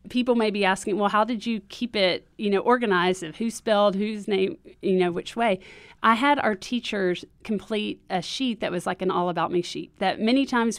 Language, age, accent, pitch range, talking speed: English, 40-59, American, 185-235 Hz, 220 wpm